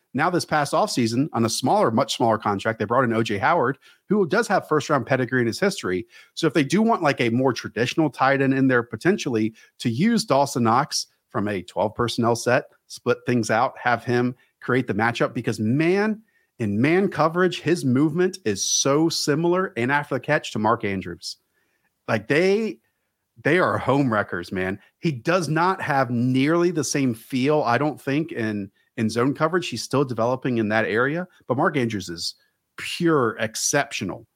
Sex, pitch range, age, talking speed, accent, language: male, 115-155 Hz, 40-59, 185 wpm, American, English